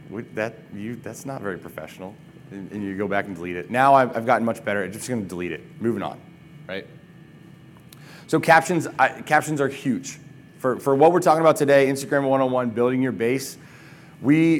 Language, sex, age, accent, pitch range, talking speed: English, male, 30-49, American, 125-155 Hz, 190 wpm